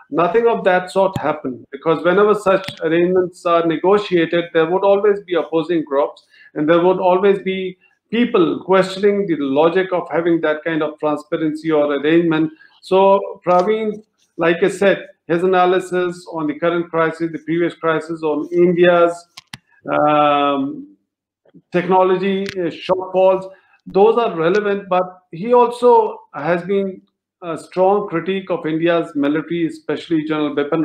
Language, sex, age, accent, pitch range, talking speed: English, male, 50-69, Indian, 160-190 Hz, 135 wpm